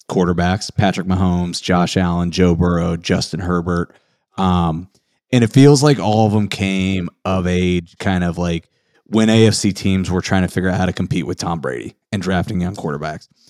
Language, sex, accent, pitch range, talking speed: English, male, American, 90-110 Hz, 180 wpm